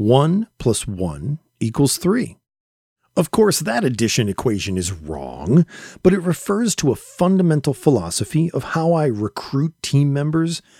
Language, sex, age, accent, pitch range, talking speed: English, male, 40-59, American, 110-165 Hz, 140 wpm